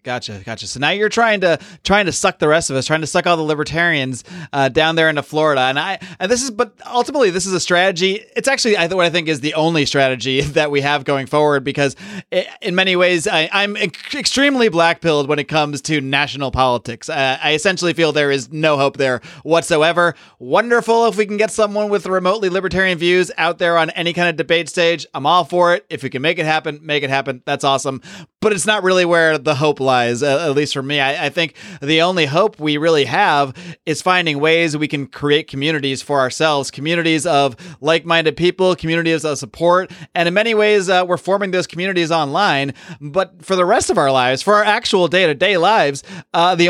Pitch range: 145-185 Hz